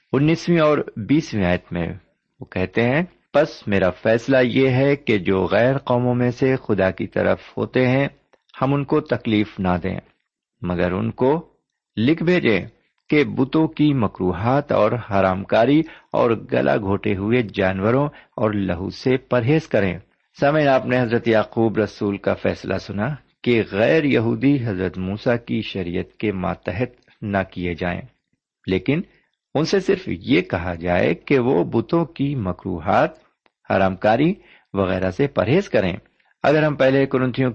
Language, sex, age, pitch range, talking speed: Urdu, male, 50-69, 95-135 Hz, 150 wpm